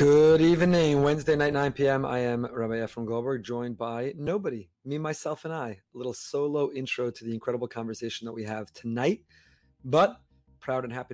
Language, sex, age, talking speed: English, male, 30-49, 185 wpm